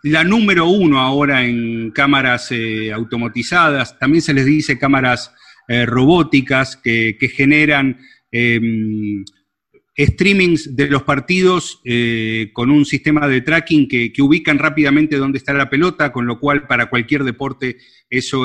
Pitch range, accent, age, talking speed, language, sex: 125-160 Hz, Argentinian, 40-59, 145 wpm, Spanish, male